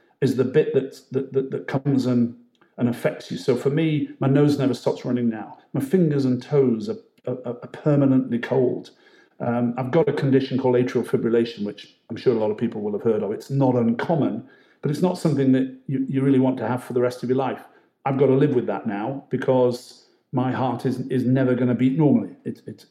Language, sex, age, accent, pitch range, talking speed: English, male, 50-69, British, 115-135 Hz, 235 wpm